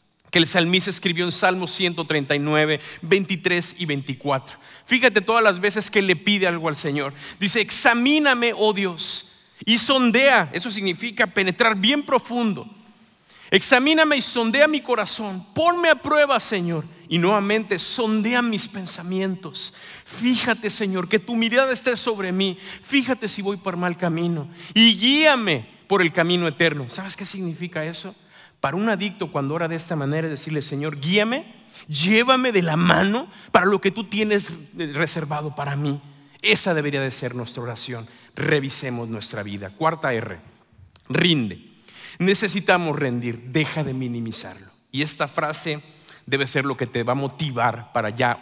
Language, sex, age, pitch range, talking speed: Spanish, male, 40-59, 135-210 Hz, 150 wpm